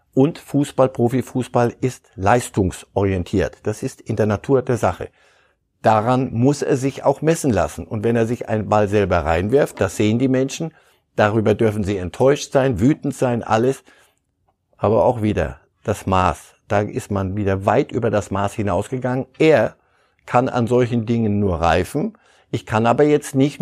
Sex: male